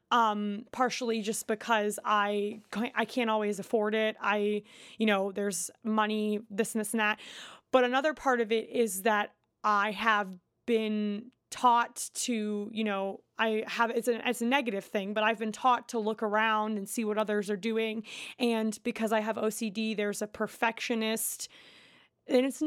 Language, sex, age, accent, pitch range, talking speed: English, female, 20-39, American, 215-245 Hz, 170 wpm